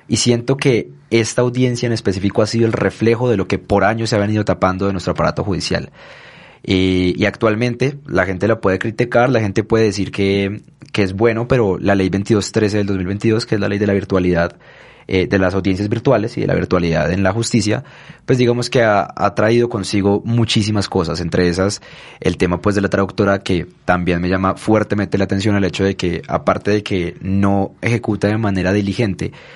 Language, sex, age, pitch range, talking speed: Spanish, male, 20-39, 95-115 Hz, 205 wpm